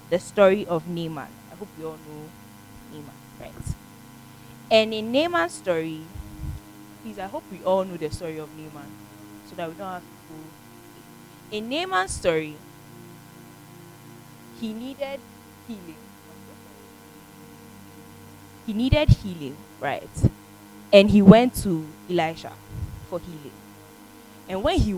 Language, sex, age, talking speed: English, female, 20-39, 125 wpm